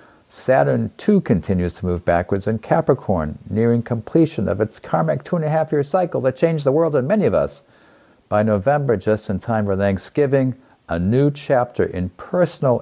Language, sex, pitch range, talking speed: English, male, 100-130 Hz, 165 wpm